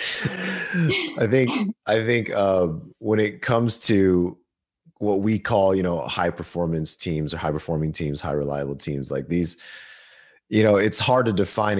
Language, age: English, 30-49